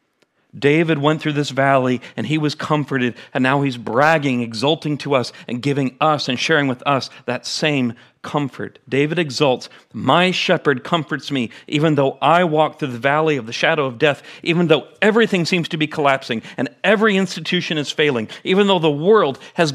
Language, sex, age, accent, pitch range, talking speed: English, male, 40-59, American, 135-190 Hz, 185 wpm